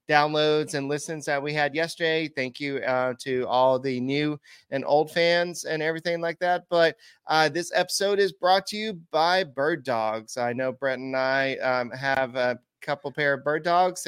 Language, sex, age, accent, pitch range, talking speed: English, male, 30-49, American, 130-155 Hz, 190 wpm